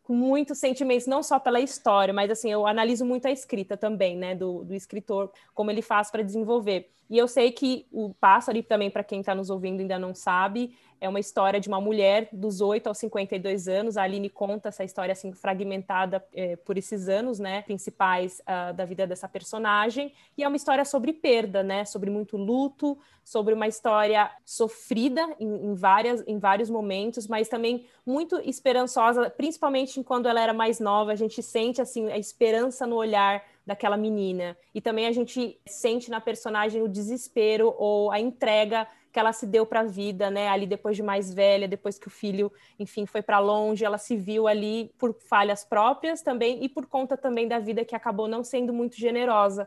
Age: 20-39